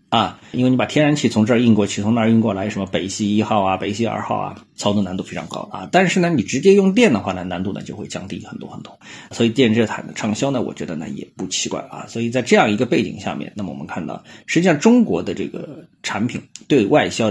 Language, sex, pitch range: Chinese, male, 100-125 Hz